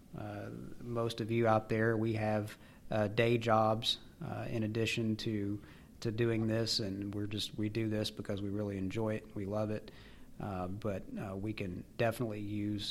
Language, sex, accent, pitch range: English, male, American, 105-115 Hz